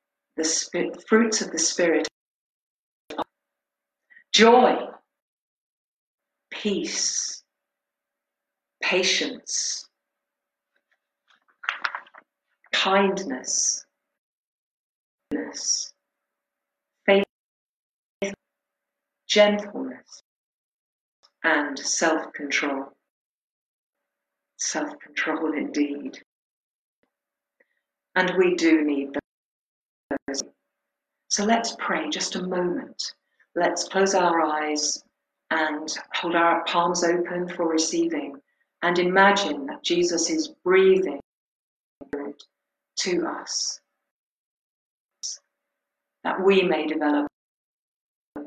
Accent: British